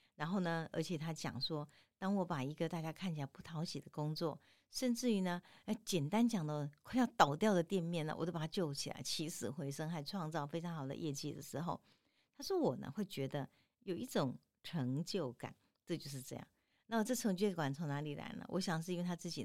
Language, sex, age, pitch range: Chinese, female, 50-69, 145-185 Hz